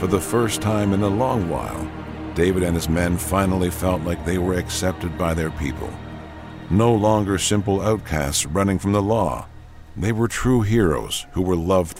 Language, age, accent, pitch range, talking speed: English, 50-69, American, 85-110 Hz, 180 wpm